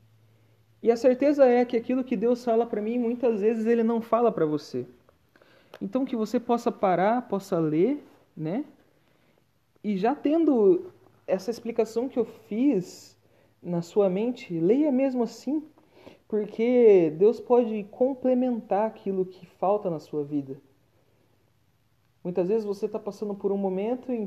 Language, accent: Portuguese, Brazilian